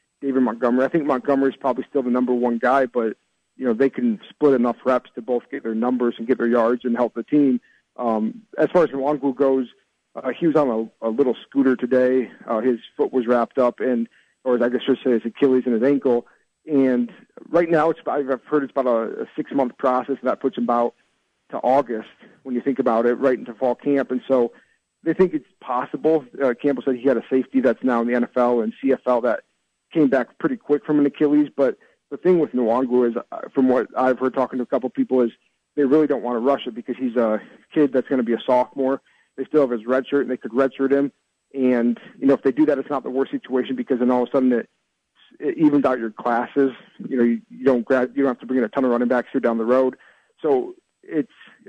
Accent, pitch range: American, 125-140 Hz